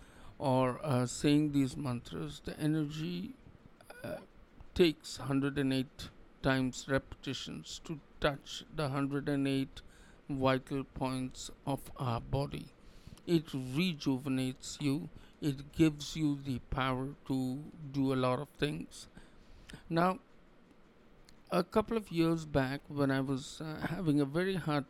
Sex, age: male, 50-69